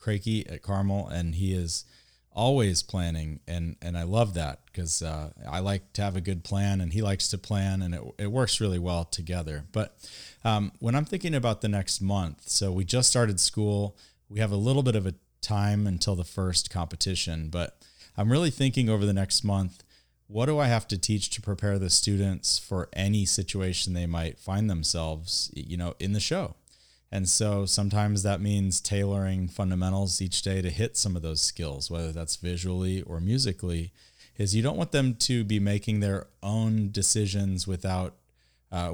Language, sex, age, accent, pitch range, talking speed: English, male, 30-49, American, 85-105 Hz, 190 wpm